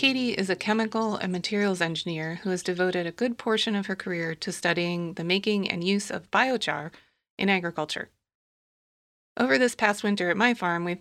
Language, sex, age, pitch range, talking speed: English, female, 30-49, 170-205 Hz, 185 wpm